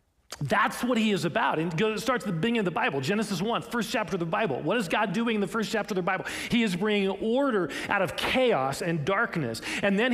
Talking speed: 245 wpm